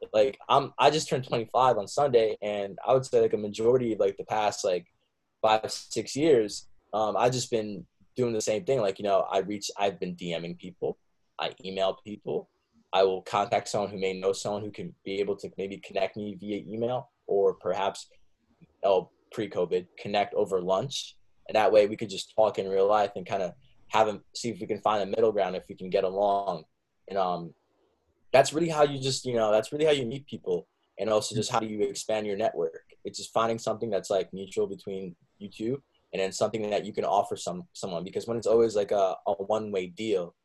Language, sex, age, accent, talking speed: English, male, 20-39, American, 220 wpm